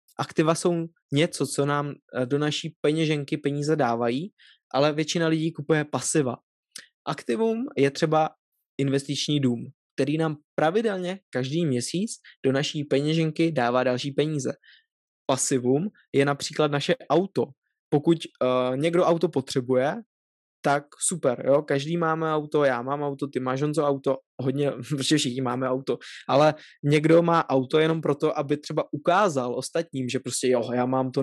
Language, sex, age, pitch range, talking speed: Czech, male, 20-39, 135-155 Hz, 140 wpm